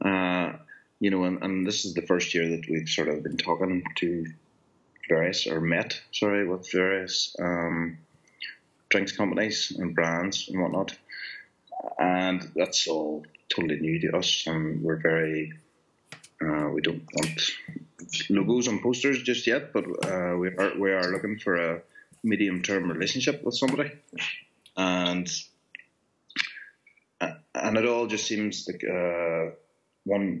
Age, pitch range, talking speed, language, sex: 30-49, 85-100 Hz, 140 wpm, English, male